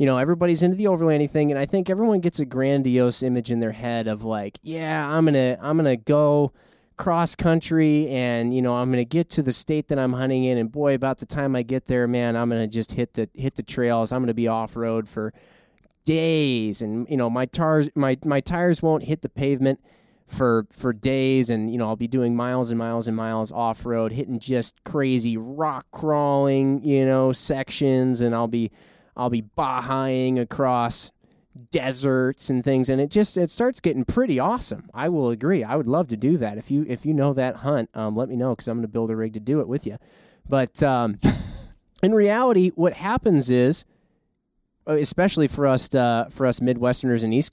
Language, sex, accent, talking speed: English, male, American, 220 wpm